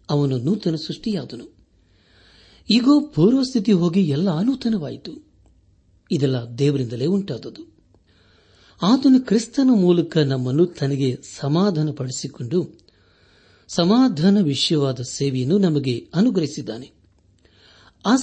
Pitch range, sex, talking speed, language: 120-190 Hz, male, 80 wpm, Kannada